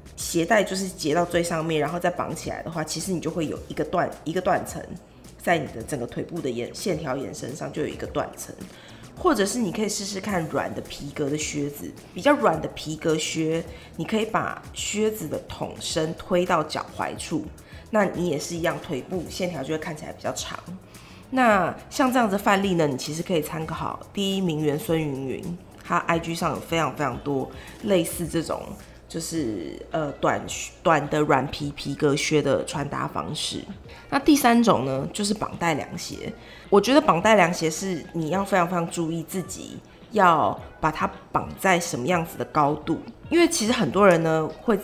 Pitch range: 155-195 Hz